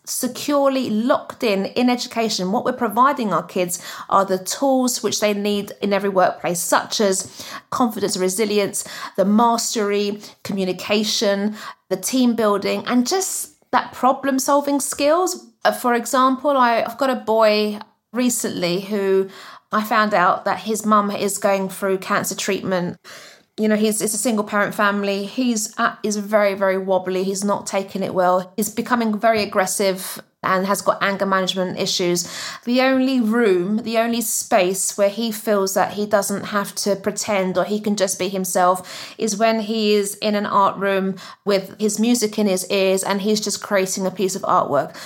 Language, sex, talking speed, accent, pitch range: English, female, 170 wpm, British, 195-230 Hz